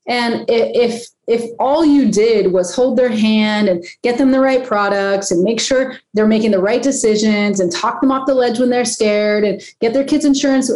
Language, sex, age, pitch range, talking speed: English, female, 30-49, 210-270 Hz, 210 wpm